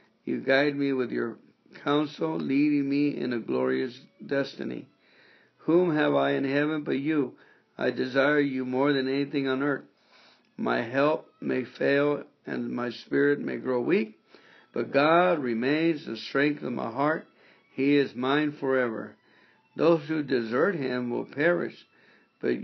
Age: 60-79